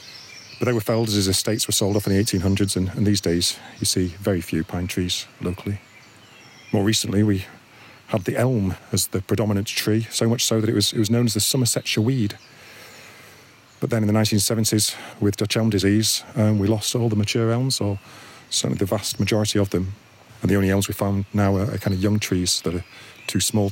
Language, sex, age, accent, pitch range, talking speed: English, male, 40-59, British, 100-115 Hz, 220 wpm